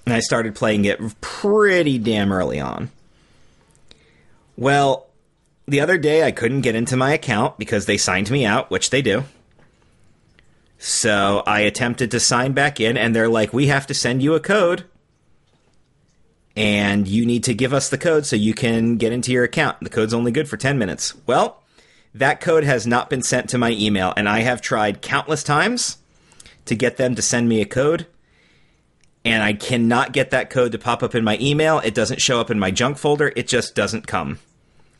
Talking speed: 195 wpm